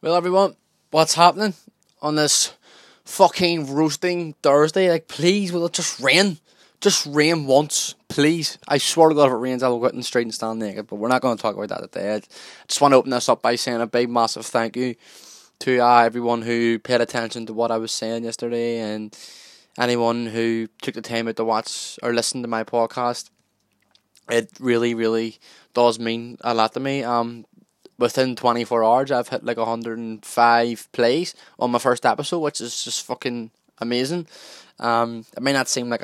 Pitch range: 115-135 Hz